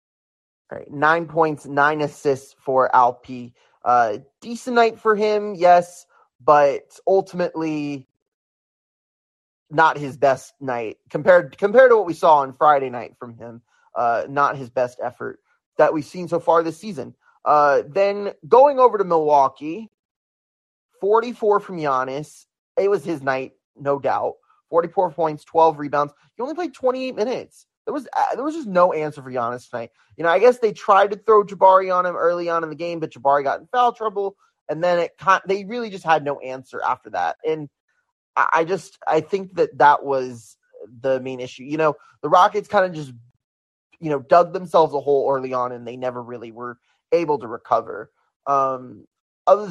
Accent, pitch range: American, 135-190 Hz